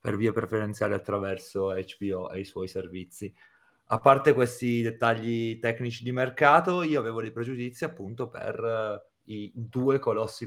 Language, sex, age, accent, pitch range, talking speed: Italian, male, 30-49, native, 100-120 Hz, 145 wpm